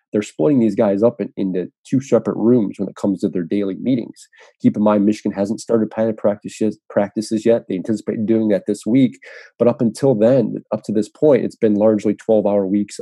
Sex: male